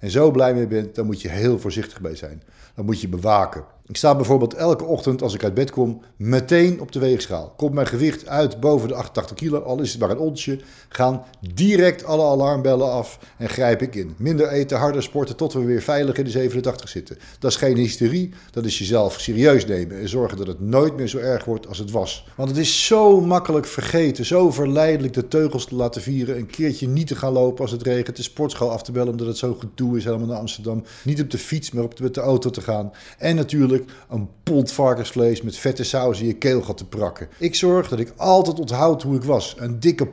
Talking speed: 235 wpm